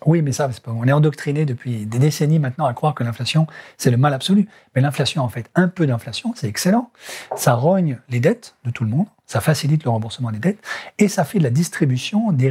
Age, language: 40-59, French